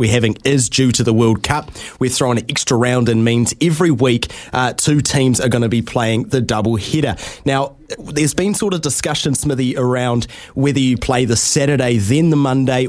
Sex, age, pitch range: male, 20-39, 115-140 Hz